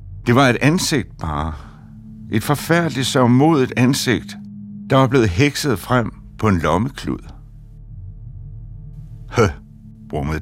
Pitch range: 100-120 Hz